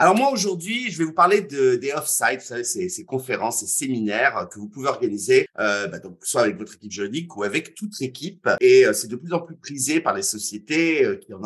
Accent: French